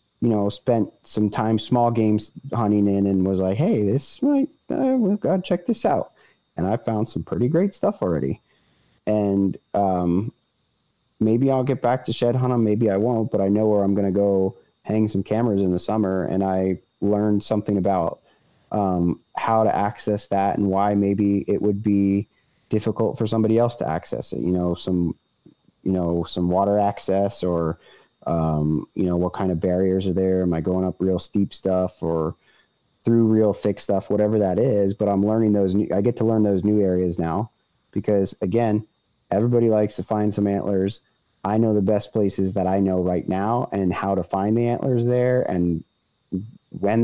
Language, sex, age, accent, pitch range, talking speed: English, male, 30-49, American, 95-110 Hz, 195 wpm